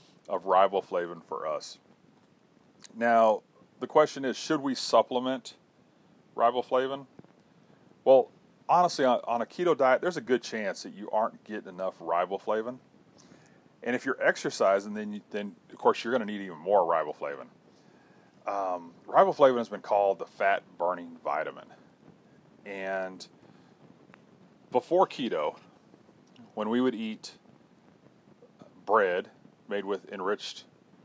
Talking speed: 120 wpm